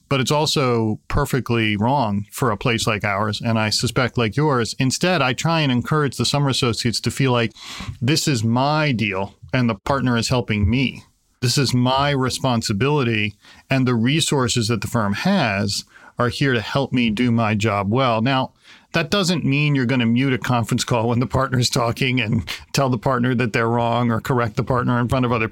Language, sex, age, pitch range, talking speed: English, male, 40-59, 115-135 Hz, 205 wpm